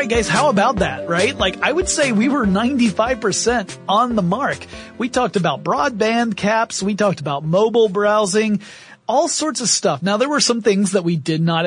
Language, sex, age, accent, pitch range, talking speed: English, male, 30-49, American, 175-225 Hz, 200 wpm